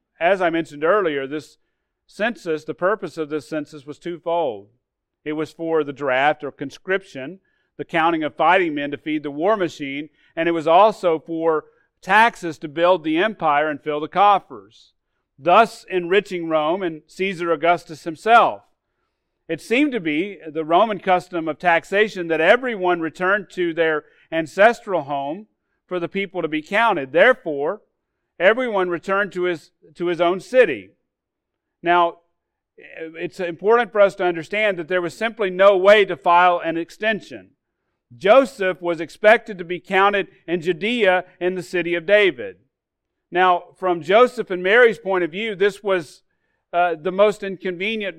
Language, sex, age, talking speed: English, male, 40-59, 155 wpm